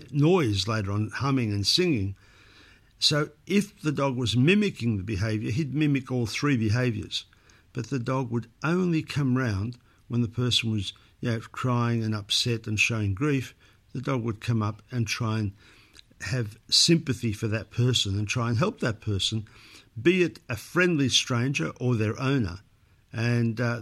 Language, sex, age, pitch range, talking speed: English, male, 50-69, 110-135 Hz, 170 wpm